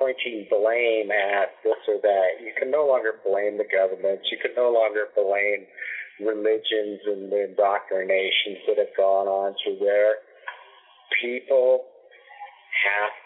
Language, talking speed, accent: English, 135 wpm, American